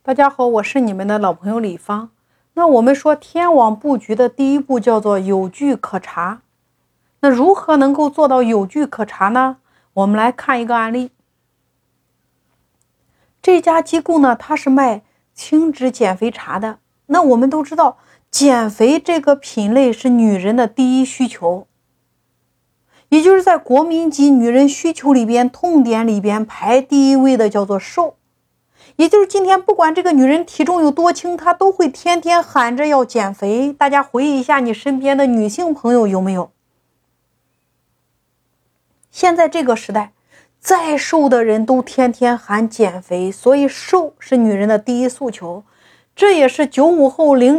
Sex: female